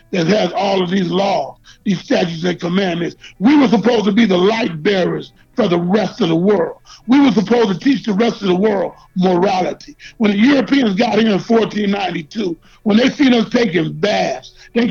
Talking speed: 195 wpm